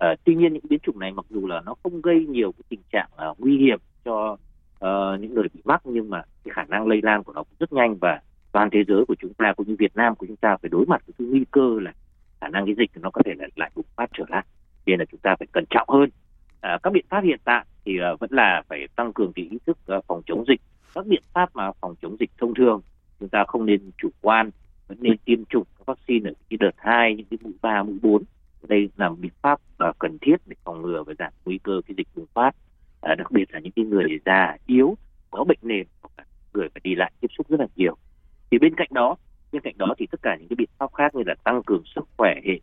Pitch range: 95-135 Hz